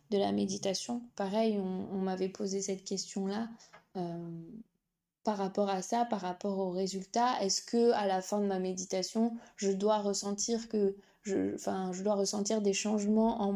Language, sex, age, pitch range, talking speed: French, female, 20-39, 195-225 Hz, 175 wpm